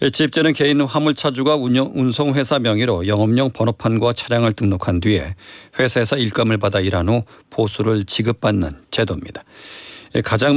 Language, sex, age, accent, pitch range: Korean, male, 40-59, native, 105-135 Hz